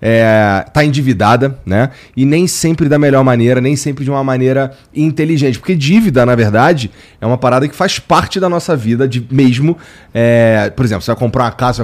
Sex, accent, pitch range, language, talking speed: male, Brazilian, 120-155 Hz, Portuguese, 205 wpm